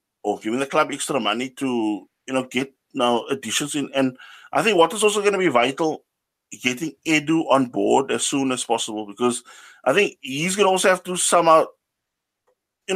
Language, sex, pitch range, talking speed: English, male, 125-160 Hz, 200 wpm